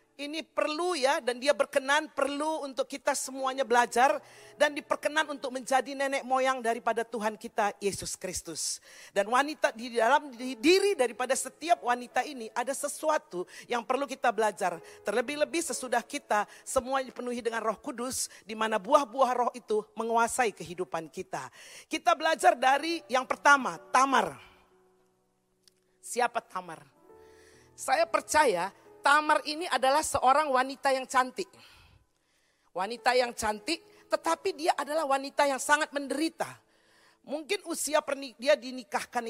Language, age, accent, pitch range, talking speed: Indonesian, 40-59, native, 230-295 Hz, 130 wpm